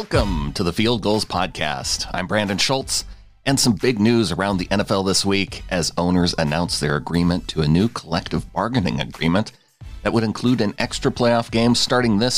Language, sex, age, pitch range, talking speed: English, male, 40-59, 85-110 Hz, 185 wpm